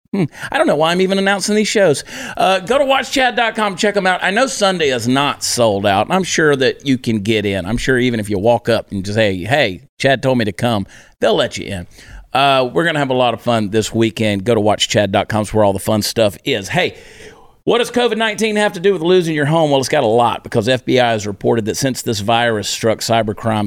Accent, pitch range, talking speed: American, 105-130 Hz, 245 wpm